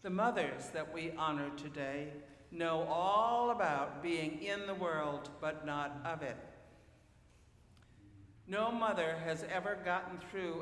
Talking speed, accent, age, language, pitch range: 130 wpm, American, 60-79, English, 140-180 Hz